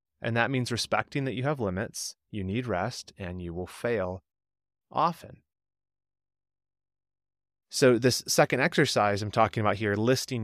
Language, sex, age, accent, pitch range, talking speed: English, male, 30-49, American, 95-130 Hz, 145 wpm